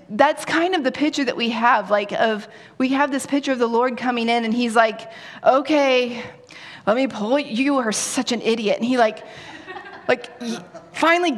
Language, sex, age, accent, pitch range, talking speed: English, female, 30-49, American, 230-305 Hz, 195 wpm